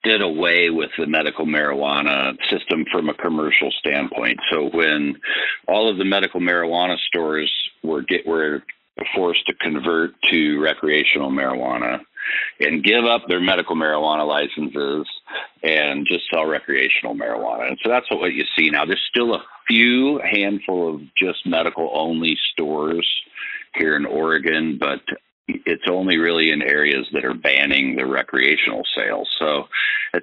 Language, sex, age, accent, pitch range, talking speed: English, male, 50-69, American, 75-100 Hz, 150 wpm